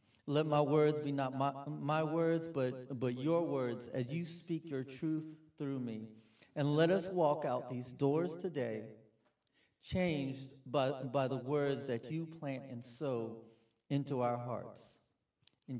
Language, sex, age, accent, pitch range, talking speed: English, male, 40-59, American, 145-205 Hz, 155 wpm